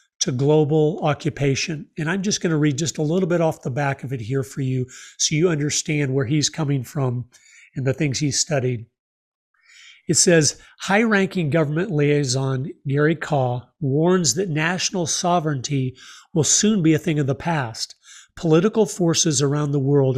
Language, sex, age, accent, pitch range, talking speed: English, male, 40-59, American, 135-170 Hz, 165 wpm